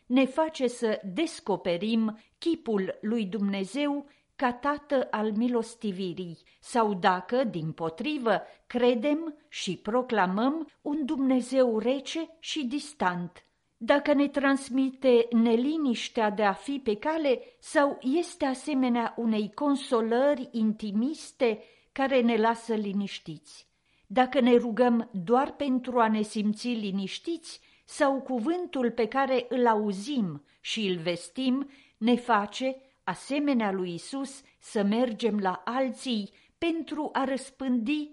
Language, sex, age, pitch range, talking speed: Romanian, female, 50-69, 215-280 Hz, 115 wpm